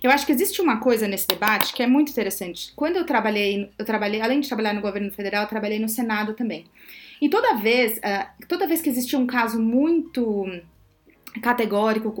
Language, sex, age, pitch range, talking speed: Portuguese, female, 30-49, 200-245 Hz, 195 wpm